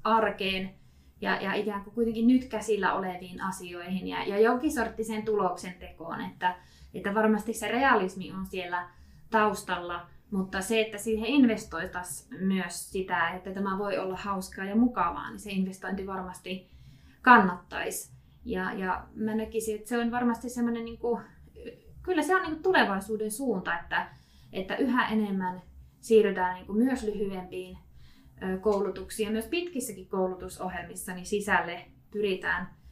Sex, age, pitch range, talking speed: female, 20-39, 185-230 Hz, 135 wpm